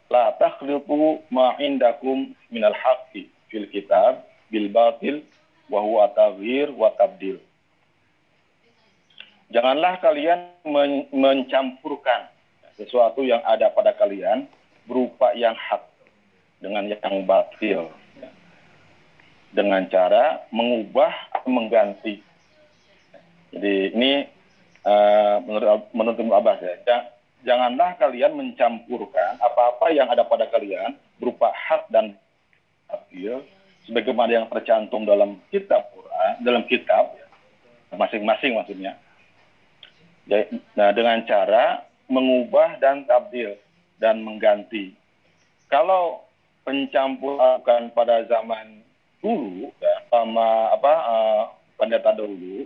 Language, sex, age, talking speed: Malay, male, 50-69, 90 wpm